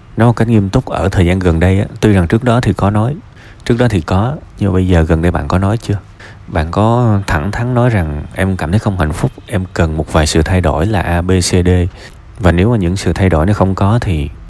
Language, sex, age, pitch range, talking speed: Vietnamese, male, 20-39, 85-100 Hz, 275 wpm